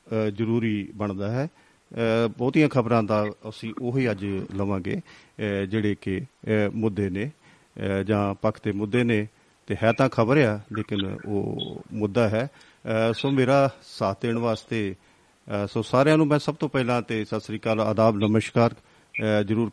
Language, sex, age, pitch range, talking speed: Punjabi, male, 50-69, 105-125 Hz, 140 wpm